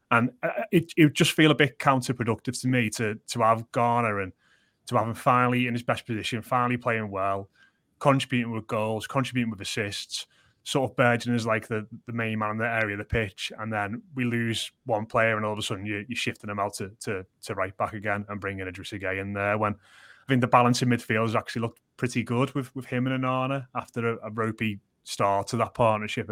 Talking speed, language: 230 wpm, English